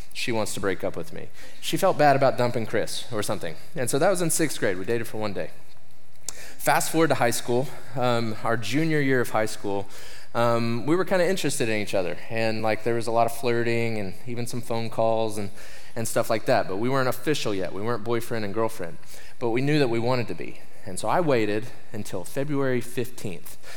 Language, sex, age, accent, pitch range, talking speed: English, male, 20-39, American, 110-130 Hz, 230 wpm